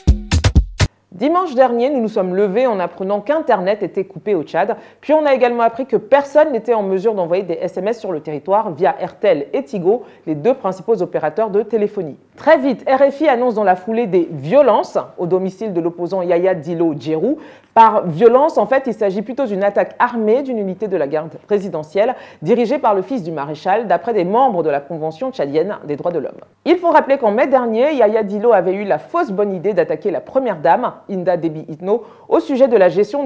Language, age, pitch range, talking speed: French, 40-59, 175-245 Hz, 210 wpm